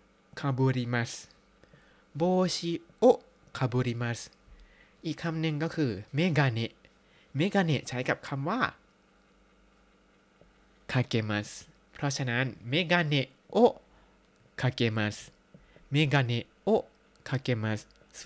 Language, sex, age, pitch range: Thai, male, 20-39, 115-150 Hz